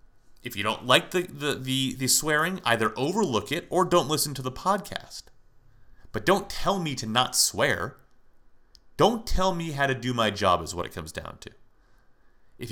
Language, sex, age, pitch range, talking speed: English, male, 30-49, 130-190 Hz, 190 wpm